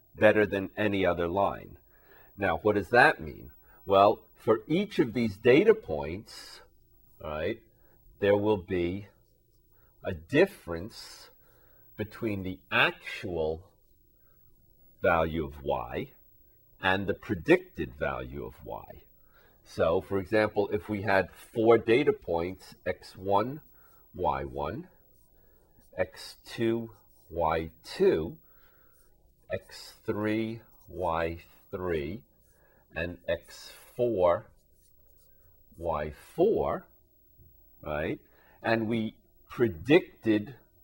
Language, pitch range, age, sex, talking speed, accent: English, 85-110 Hz, 50-69, male, 85 wpm, American